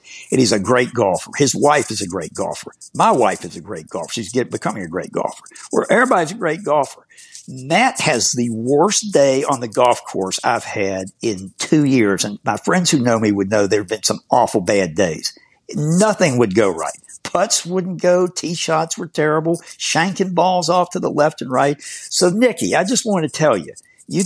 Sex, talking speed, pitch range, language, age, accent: male, 205 wpm, 135-180 Hz, English, 60-79, American